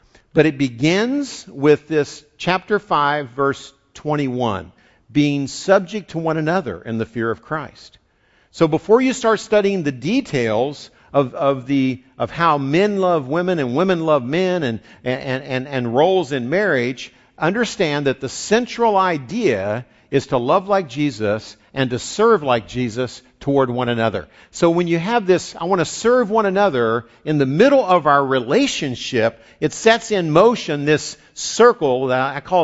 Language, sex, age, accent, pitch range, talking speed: English, male, 50-69, American, 125-185 Hz, 165 wpm